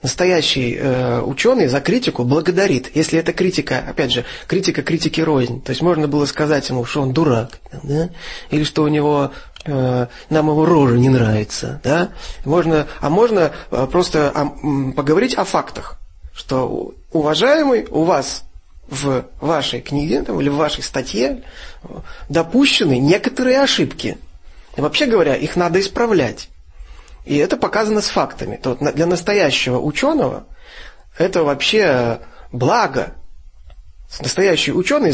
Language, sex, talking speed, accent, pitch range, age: Russian, male, 120 wpm, native, 130-180 Hz, 30-49